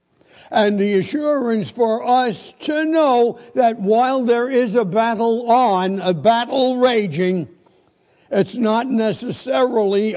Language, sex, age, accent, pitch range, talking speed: English, male, 60-79, American, 170-240 Hz, 120 wpm